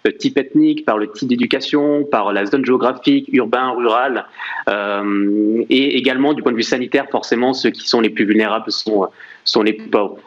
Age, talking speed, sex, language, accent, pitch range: 20-39, 185 wpm, male, French, French, 125-175 Hz